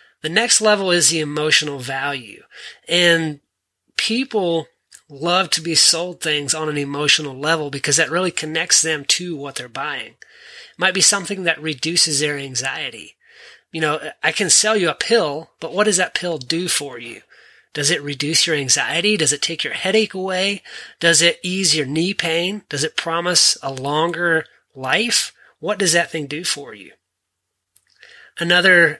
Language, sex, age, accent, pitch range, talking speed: English, male, 30-49, American, 150-175 Hz, 170 wpm